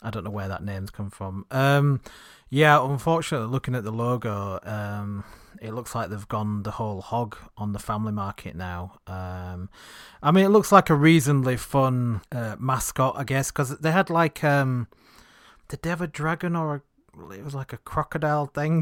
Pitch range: 105-150 Hz